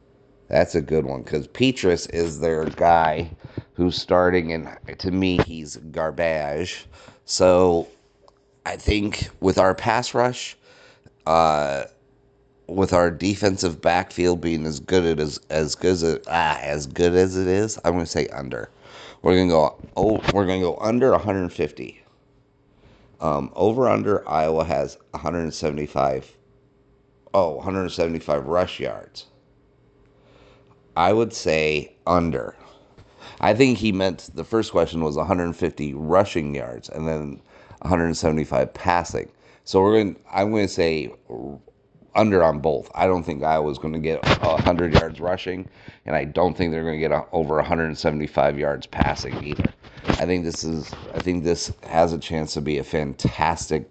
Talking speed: 150 wpm